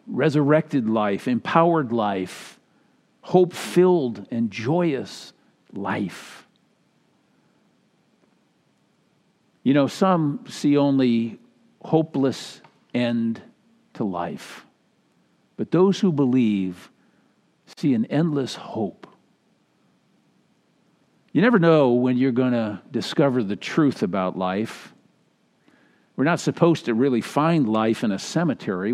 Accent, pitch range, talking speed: American, 115-165 Hz, 95 wpm